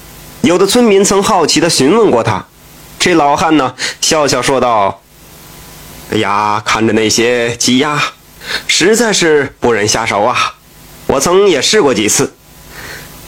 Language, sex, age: Chinese, male, 30-49